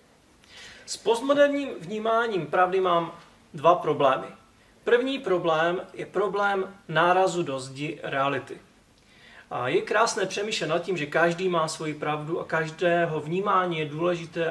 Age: 30-49